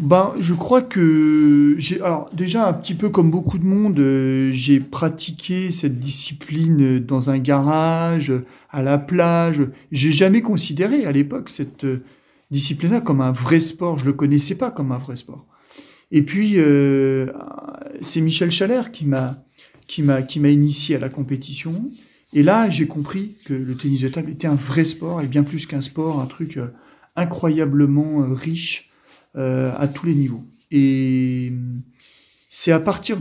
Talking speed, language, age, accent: 165 wpm, French, 40-59, French